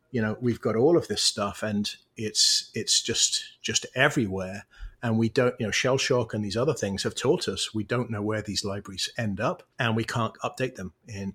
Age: 30-49